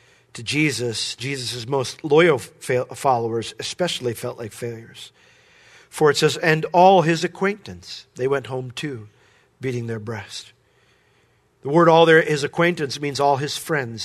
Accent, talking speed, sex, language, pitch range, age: American, 140 wpm, male, English, 125-165 Hz, 50-69